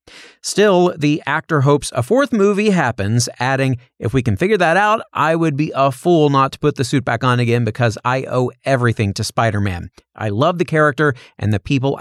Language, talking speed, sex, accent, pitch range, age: English, 205 wpm, male, American, 115-155 Hz, 40-59